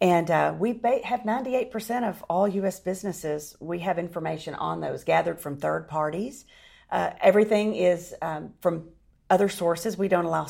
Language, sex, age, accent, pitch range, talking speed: English, female, 40-59, American, 160-205 Hz, 160 wpm